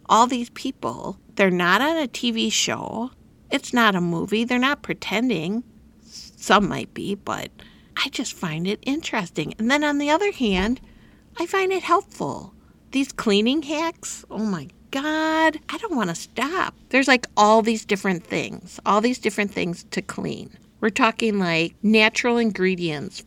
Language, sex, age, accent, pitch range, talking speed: English, female, 50-69, American, 185-255 Hz, 160 wpm